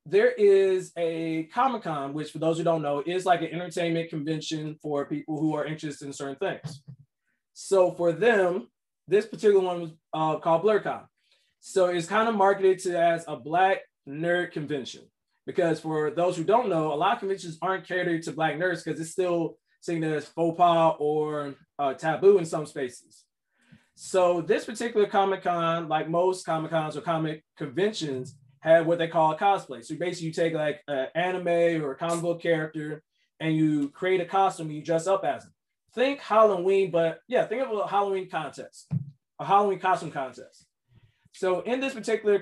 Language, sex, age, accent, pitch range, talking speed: English, male, 20-39, American, 155-190 Hz, 185 wpm